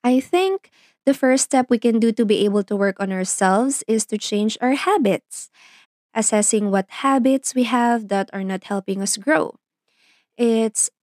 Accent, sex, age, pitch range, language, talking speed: native, female, 20-39, 195-245 Hz, Filipino, 175 wpm